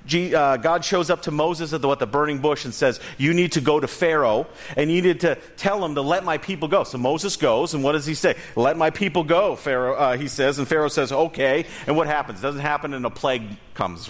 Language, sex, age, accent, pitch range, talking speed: English, male, 40-59, American, 140-175 Hz, 260 wpm